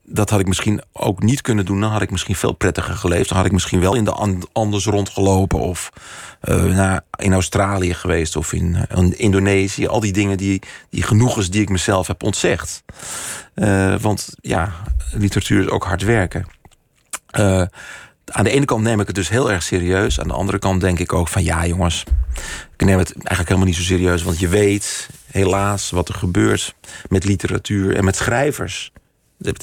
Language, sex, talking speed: Dutch, male, 190 wpm